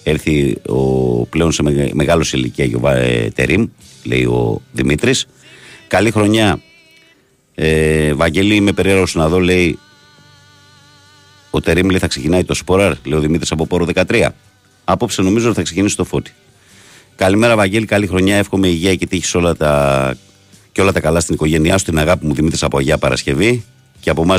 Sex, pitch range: male, 80-95 Hz